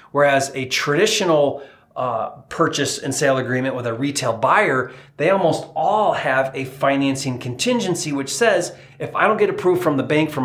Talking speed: 170 wpm